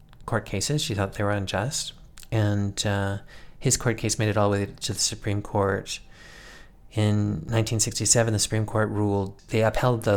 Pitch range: 95-115 Hz